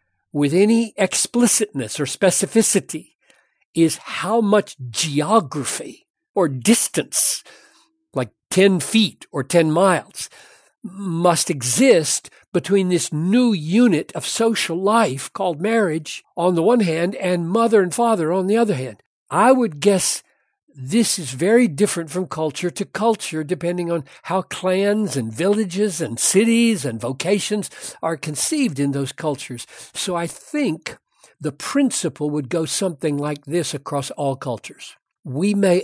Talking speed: 135 wpm